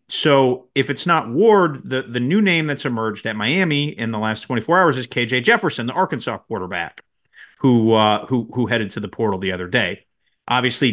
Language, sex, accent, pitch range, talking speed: English, male, American, 115-170 Hz, 200 wpm